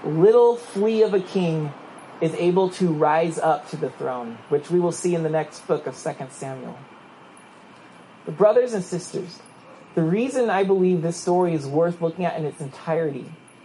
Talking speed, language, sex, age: 180 wpm, English, male, 30-49